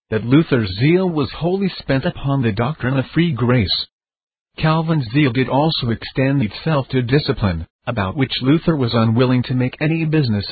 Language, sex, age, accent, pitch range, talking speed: English, male, 50-69, American, 115-140 Hz, 165 wpm